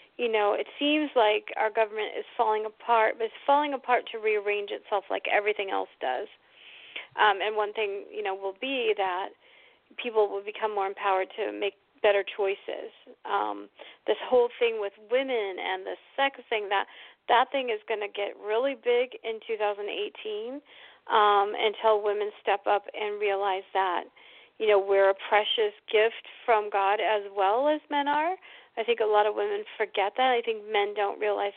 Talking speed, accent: 180 wpm, American